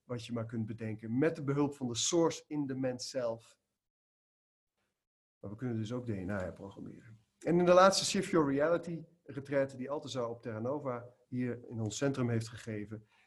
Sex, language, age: male, Dutch, 40-59